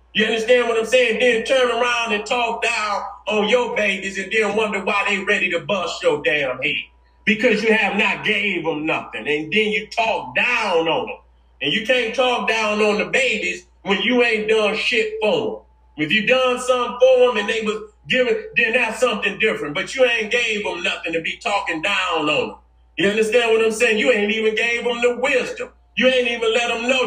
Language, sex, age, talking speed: English, male, 30-49, 215 wpm